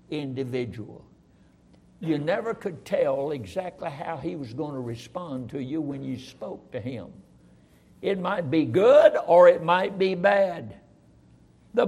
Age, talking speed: 60-79, 145 wpm